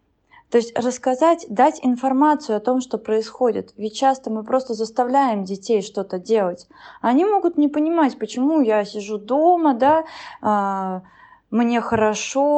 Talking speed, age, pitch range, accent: 140 wpm, 20-39, 200-260 Hz, native